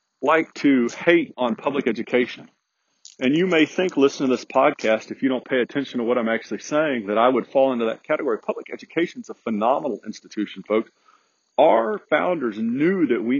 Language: English